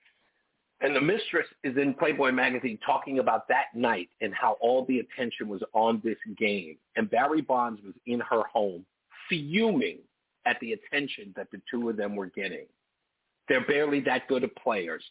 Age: 50-69